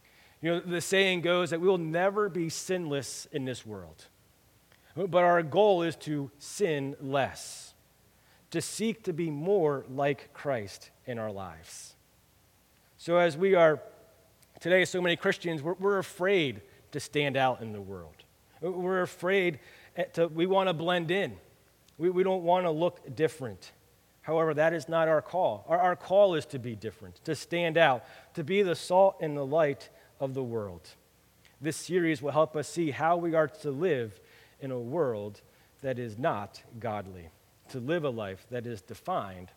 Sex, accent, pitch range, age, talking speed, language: male, American, 125-170 Hz, 30-49, 175 wpm, English